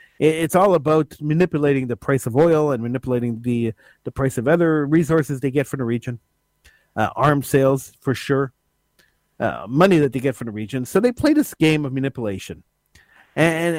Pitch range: 130-170 Hz